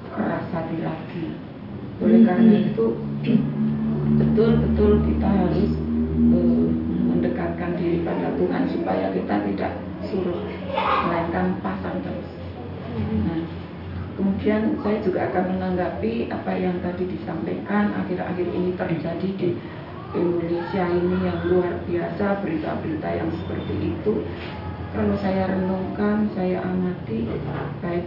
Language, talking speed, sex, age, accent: Indonesian, 105 wpm, female, 30-49, native